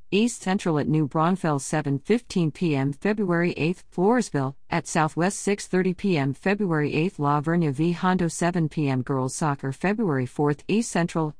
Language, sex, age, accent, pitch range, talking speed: English, female, 50-69, American, 150-195 Hz, 145 wpm